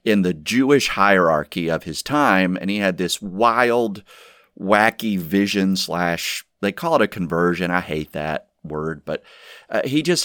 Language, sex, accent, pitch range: English, male, American, 85-130 Hz